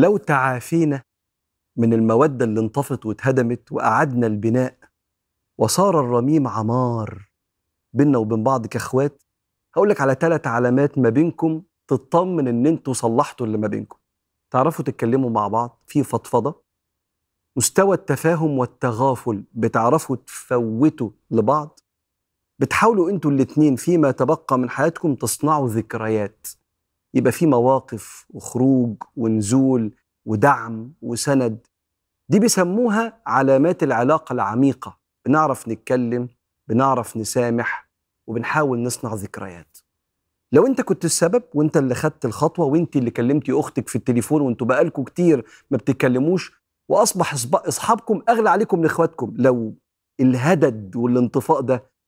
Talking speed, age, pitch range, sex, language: 110 wpm, 40-59, 115-150 Hz, male, Arabic